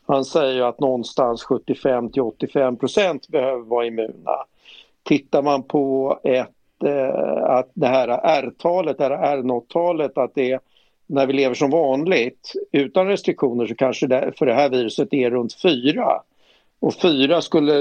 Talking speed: 150 wpm